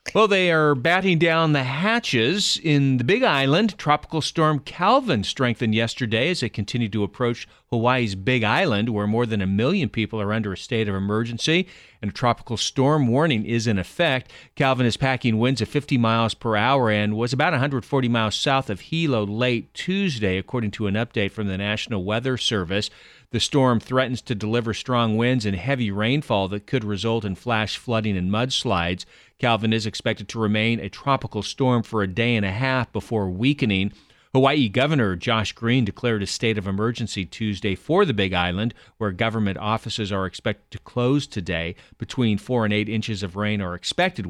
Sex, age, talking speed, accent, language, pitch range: male, 40-59, 185 wpm, American, English, 105-130 Hz